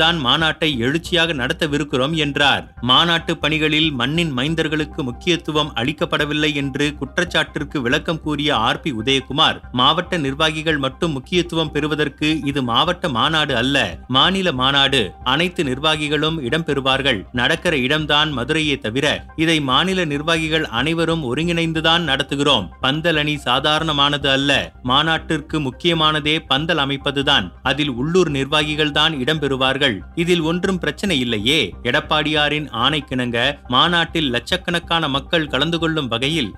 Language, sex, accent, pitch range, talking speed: Tamil, male, native, 135-160 Hz, 105 wpm